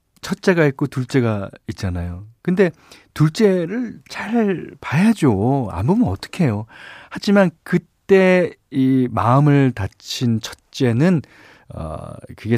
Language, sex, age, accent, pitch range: Korean, male, 40-59, native, 100-150 Hz